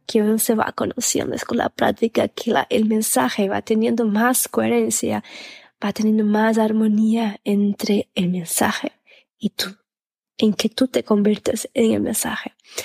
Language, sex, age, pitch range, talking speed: Spanish, female, 20-39, 220-255 Hz, 150 wpm